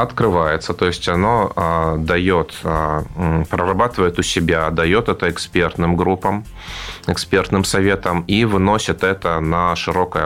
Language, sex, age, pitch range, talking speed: Russian, male, 20-39, 80-90 Hz, 110 wpm